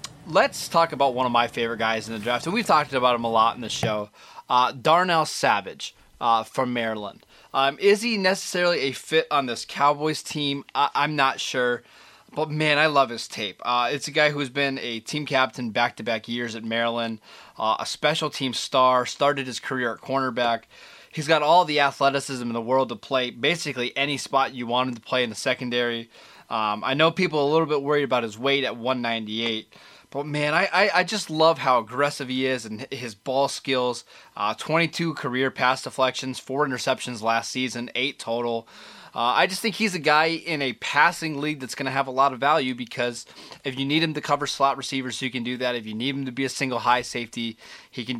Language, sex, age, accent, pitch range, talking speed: English, male, 20-39, American, 120-145 Hz, 220 wpm